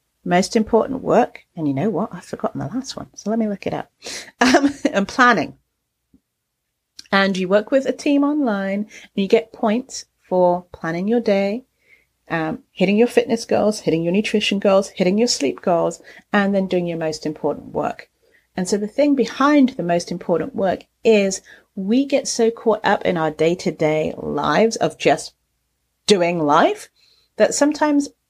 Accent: British